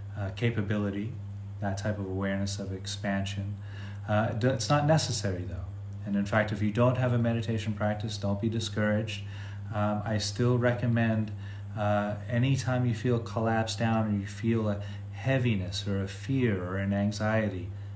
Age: 30-49